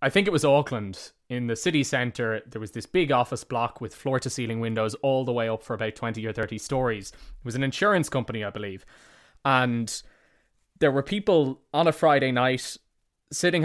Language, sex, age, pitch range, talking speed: English, male, 20-39, 115-145 Hz, 195 wpm